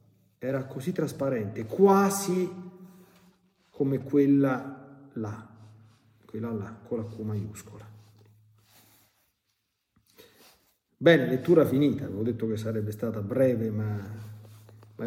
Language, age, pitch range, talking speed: Italian, 40-59, 110-150 Hz, 95 wpm